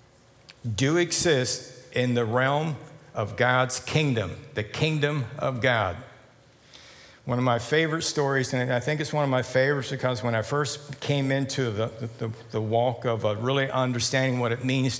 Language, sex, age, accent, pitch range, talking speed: English, male, 60-79, American, 120-140 Hz, 165 wpm